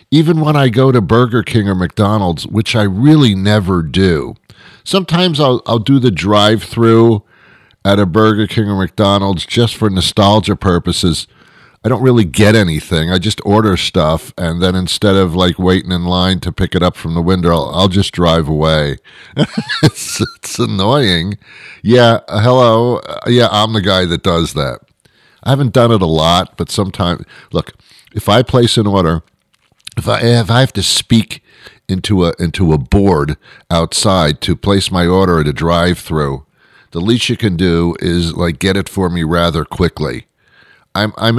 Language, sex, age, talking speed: English, male, 50-69, 170 wpm